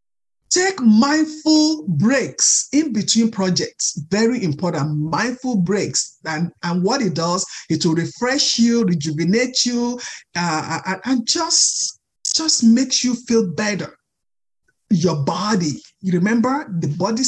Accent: Nigerian